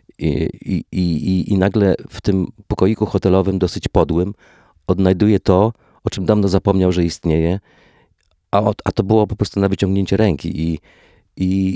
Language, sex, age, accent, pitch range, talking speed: Polish, male, 40-59, native, 80-105 Hz, 160 wpm